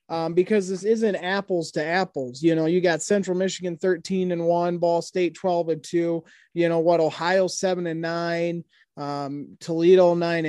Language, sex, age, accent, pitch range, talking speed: English, male, 30-49, American, 155-180 Hz, 170 wpm